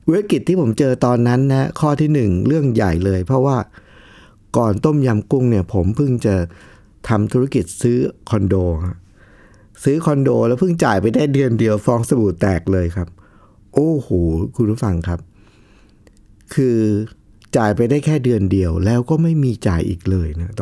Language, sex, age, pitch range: Thai, male, 60-79, 100-145 Hz